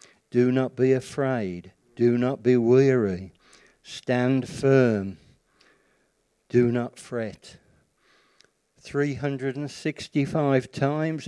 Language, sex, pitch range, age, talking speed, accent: English, male, 115-140 Hz, 60-79, 80 wpm, British